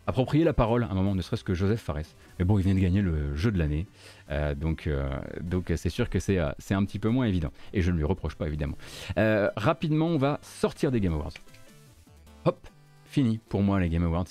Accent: French